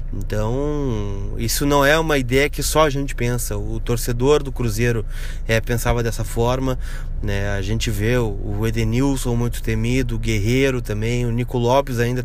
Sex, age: male, 20-39